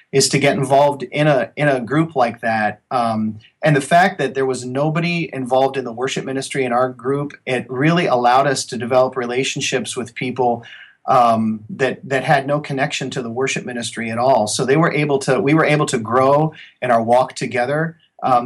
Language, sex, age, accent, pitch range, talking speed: English, male, 40-59, American, 120-145 Hz, 205 wpm